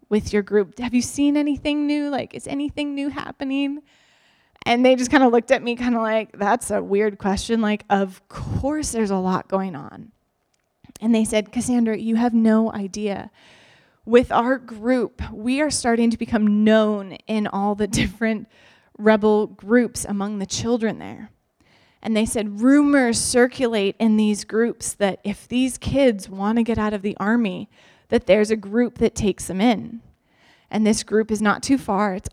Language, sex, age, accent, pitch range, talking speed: English, female, 20-39, American, 205-240 Hz, 180 wpm